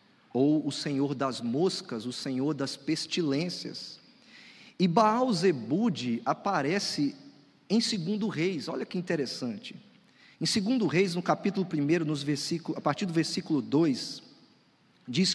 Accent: Brazilian